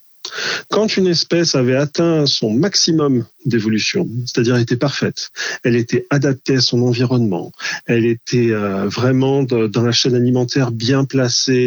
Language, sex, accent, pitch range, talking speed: French, male, French, 120-160 Hz, 135 wpm